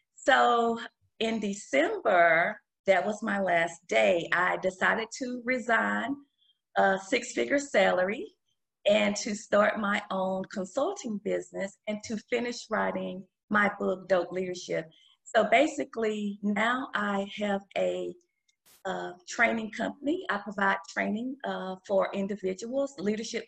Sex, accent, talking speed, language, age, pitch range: female, American, 120 wpm, English, 40-59, 190-230 Hz